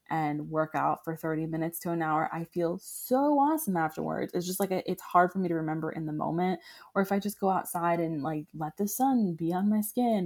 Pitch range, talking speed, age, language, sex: 160-195 Hz, 240 wpm, 20-39, English, female